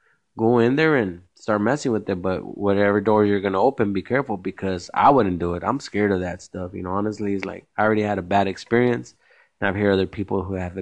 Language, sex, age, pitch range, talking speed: English, male, 20-39, 95-105 Hz, 250 wpm